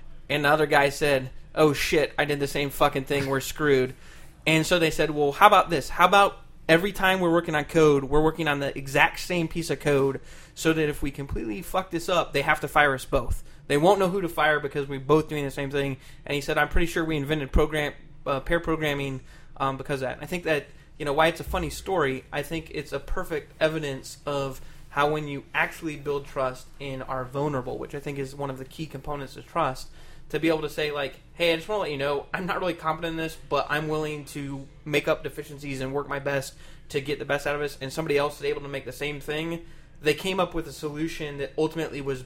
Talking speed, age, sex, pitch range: 255 wpm, 20-39, male, 140-160 Hz